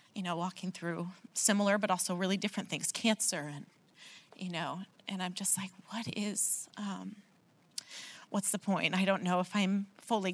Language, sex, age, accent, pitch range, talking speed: English, female, 30-49, American, 175-210 Hz, 175 wpm